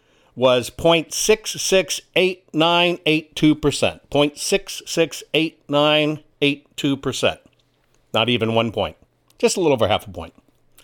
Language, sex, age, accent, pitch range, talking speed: English, male, 60-79, American, 125-165 Hz, 80 wpm